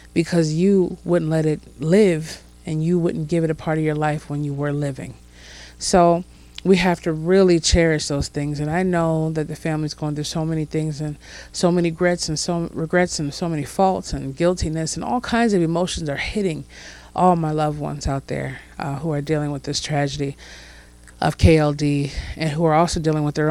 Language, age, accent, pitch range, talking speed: English, 30-49, American, 145-175 Hz, 200 wpm